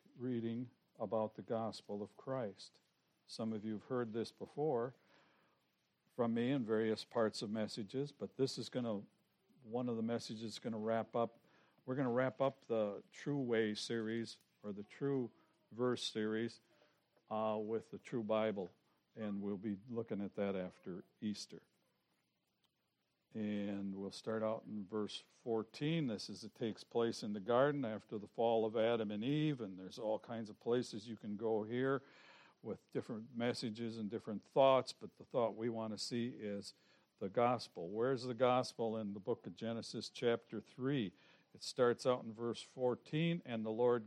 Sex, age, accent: male, 60-79, American